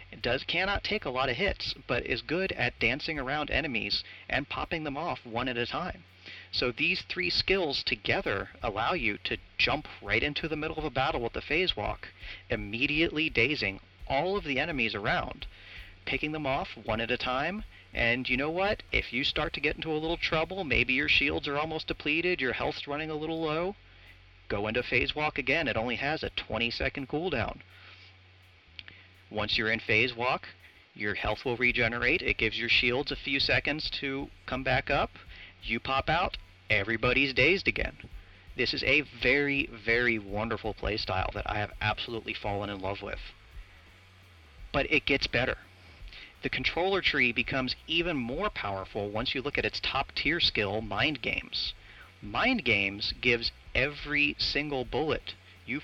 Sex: male